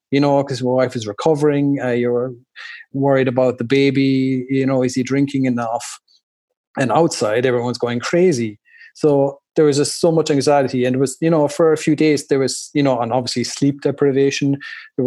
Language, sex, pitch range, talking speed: English, male, 120-135 Hz, 195 wpm